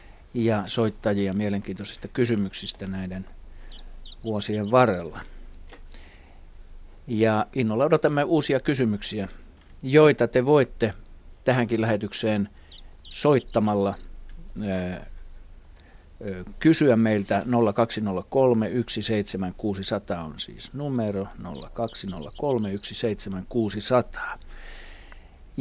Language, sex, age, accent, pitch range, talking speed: Finnish, male, 50-69, native, 90-115 Hz, 60 wpm